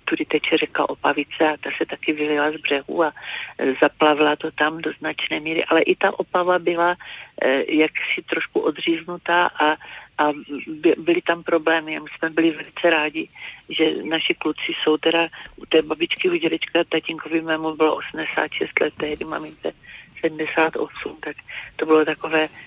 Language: Czech